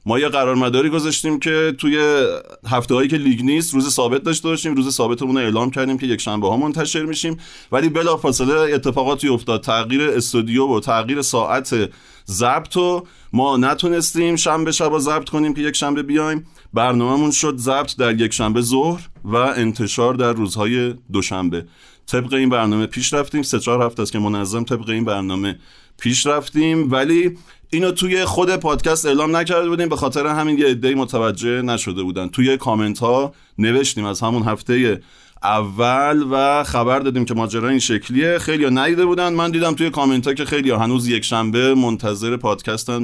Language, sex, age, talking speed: Persian, male, 30-49, 165 wpm